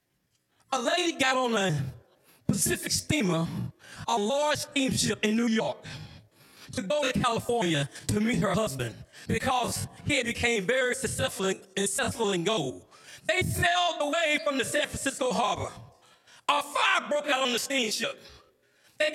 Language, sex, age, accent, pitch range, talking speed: English, male, 40-59, American, 215-300 Hz, 140 wpm